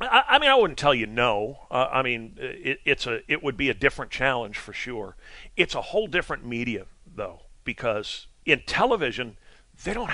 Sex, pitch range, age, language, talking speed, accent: male, 120-145 Hz, 50-69, English, 190 wpm, American